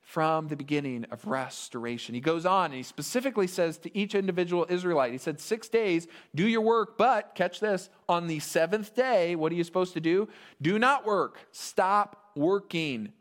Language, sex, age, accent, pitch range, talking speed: English, male, 40-59, American, 150-205 Hz, 185 wpm